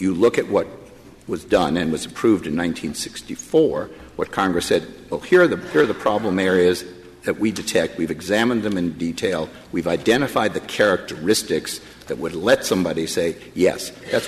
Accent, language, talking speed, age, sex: American, English, 170 wpm, 60-79, male